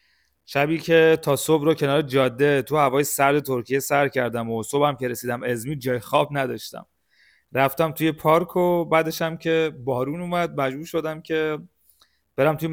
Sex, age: male, 30-49